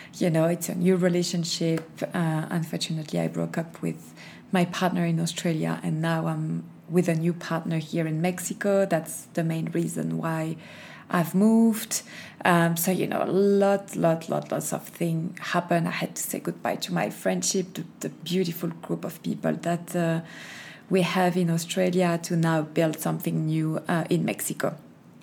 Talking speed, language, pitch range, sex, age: 175 wpm, French, 165-185 Hz, female, 20-39